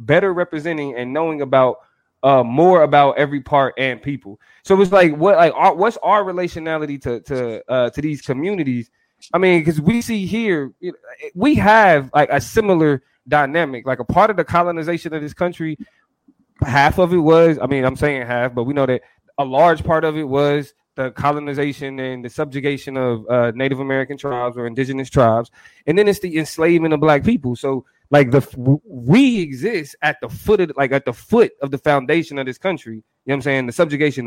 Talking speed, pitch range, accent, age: 200 wpm, 130-170 Hz, American, 20-39